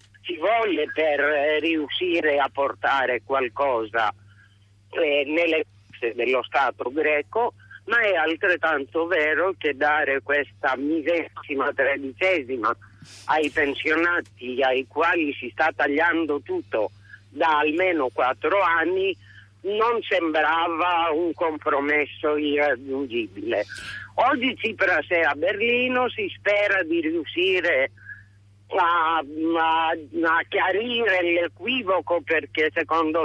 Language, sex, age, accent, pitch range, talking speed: Italian, male, 50-69, native, 135-175 Hz, 100 wpm